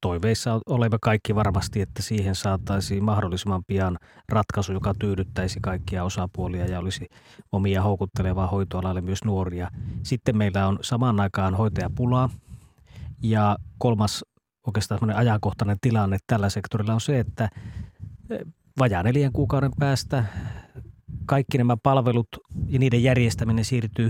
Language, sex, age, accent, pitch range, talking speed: Finnish, male, 30-49, native, 105-130 Hz, 120 wpm